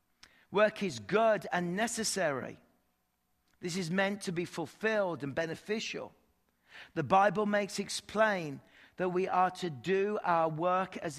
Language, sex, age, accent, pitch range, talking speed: English, male, 40-59, British, 170-235 Hz, 140 wpm